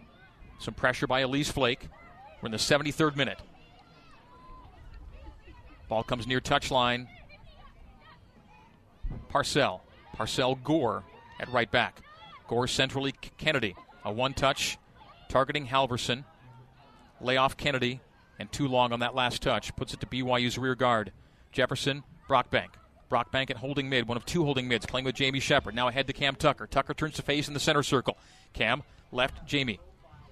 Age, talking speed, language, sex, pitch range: 40-59, 145 wpm, English, male, 120-140 Hz